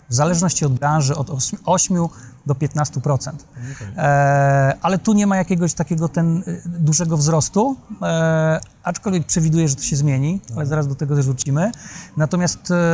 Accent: native